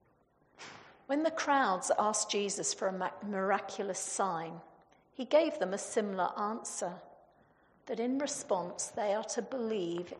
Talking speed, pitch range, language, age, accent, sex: 130 wpm, 195-250 Hz, English, 50-69, British, female